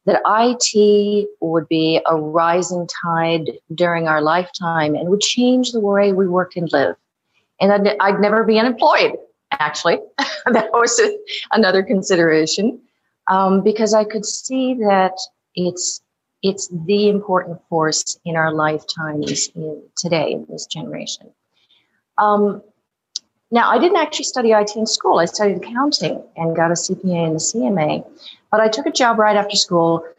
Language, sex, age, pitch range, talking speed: English, female, 40-59, 175-220 Hz, 150 wpm